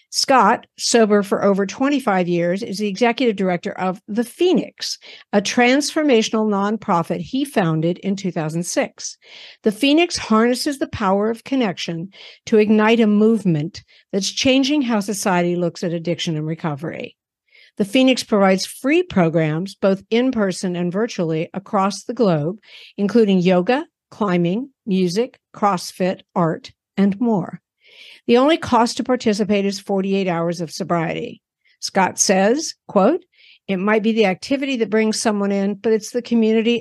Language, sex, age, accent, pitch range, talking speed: English, female, 60-79, American, 180-235 Hz, 140 wpm